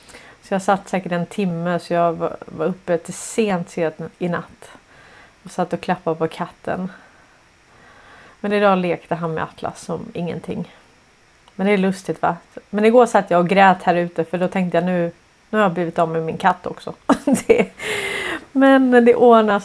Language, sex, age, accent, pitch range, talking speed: Swedish, female, 30-49, native, 170-205 Hz, 180 wpm